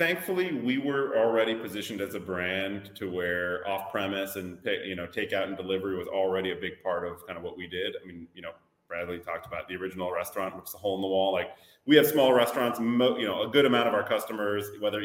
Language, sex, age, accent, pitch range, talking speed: English, male, 30-49, American, 90-115 Hz, 230 wpm